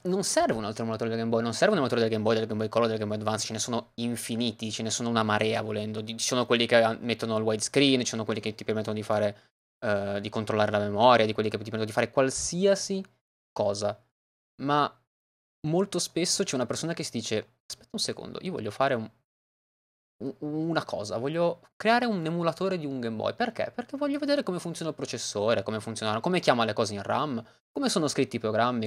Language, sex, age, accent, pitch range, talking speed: Italian, male, 20-39, native, 110-145 Hz, 225 wpm